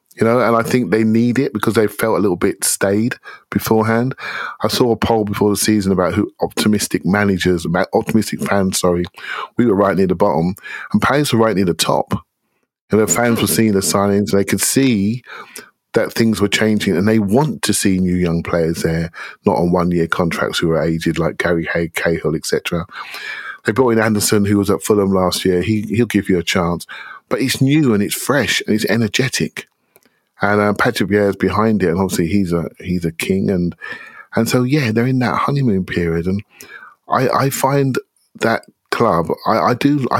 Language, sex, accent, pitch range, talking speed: English, male, British, 90-115 Hz, 205 wpm